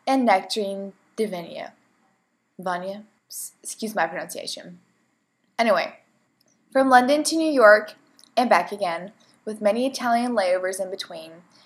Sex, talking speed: female, 115 wpm